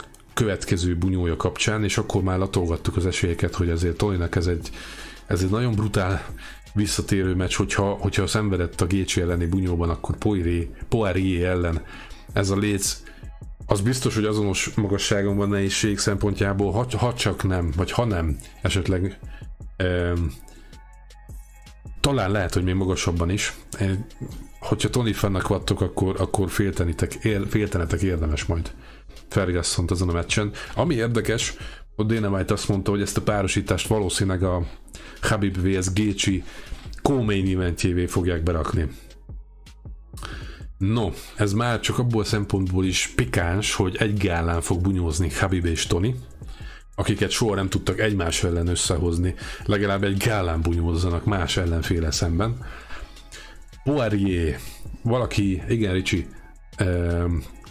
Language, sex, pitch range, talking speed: Hungarian, male, 90-105 Hz, 130 wpm